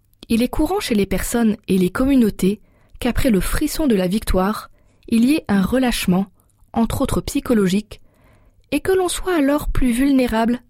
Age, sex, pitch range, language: 20-39, female, 185-245 Hz, French